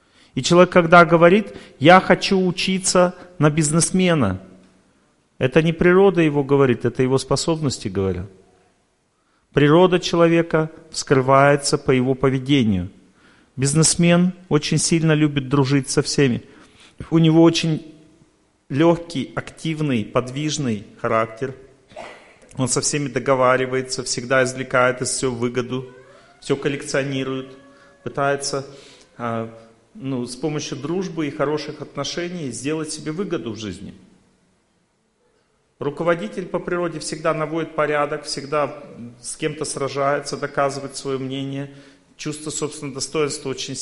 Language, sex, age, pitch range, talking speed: Russian, male, 40-59, 130-160 Hz, 110 wpm